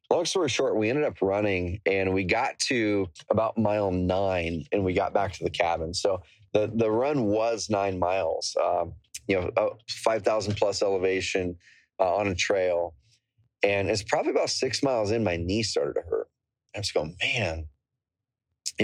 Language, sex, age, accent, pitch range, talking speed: English, male, 30-49, American, 95-110 Hz, 175 wpm